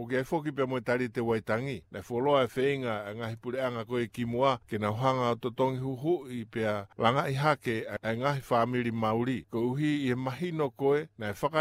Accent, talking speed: American, 210 wpm